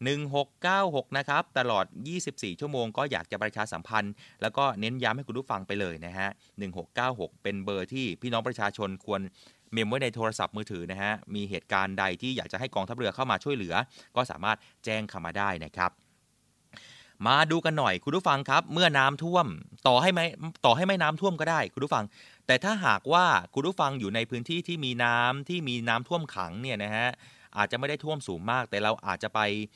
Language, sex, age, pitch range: Thai, male, 30-49, 105-155 Hz